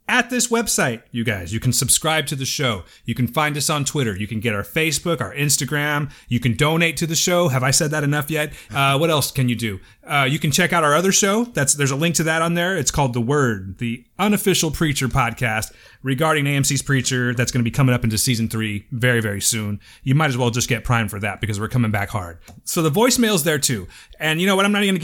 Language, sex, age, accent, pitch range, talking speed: English, male, 30-49, American, 115-165 Hz, 260 wpm